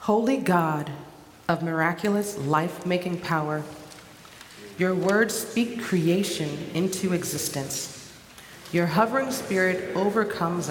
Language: English